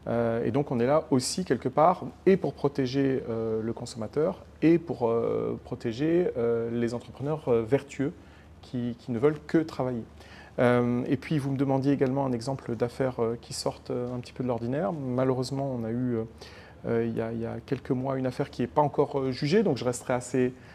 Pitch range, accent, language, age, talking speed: 115-135 Hz, French, French, 40-59, 205 wpm